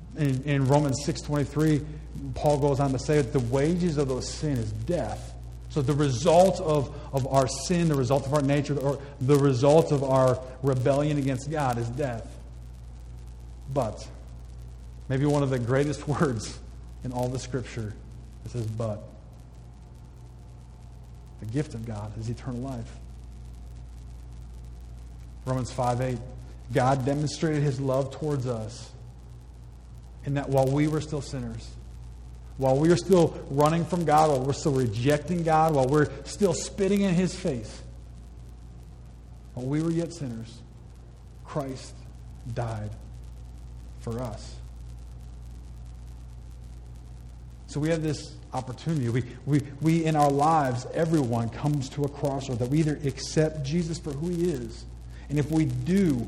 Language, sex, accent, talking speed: English, male, American, 140 wpm